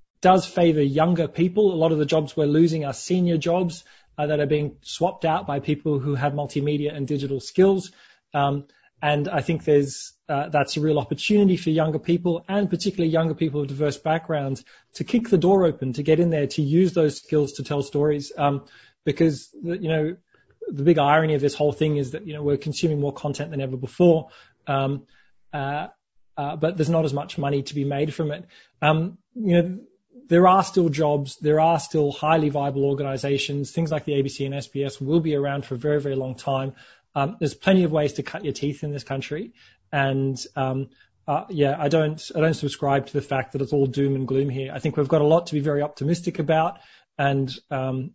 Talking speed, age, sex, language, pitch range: 215 wpm, 20-39, male, English, 140-160 Hz